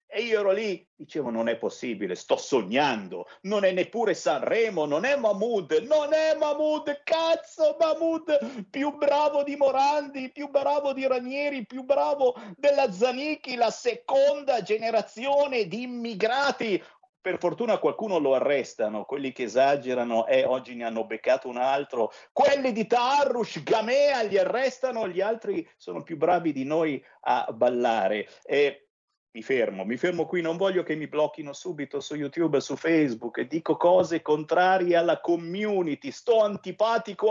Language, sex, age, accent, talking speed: Italian, male, 50-69, native, 150 wpm